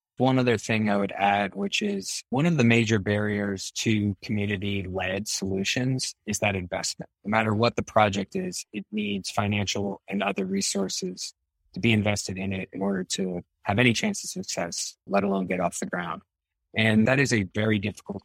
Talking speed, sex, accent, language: 185 wpm, male, American, English